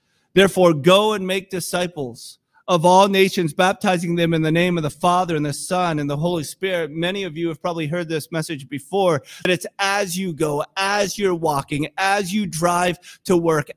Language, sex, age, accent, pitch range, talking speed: English, male, 30-49, American, 165-195 Hz, 195 wpm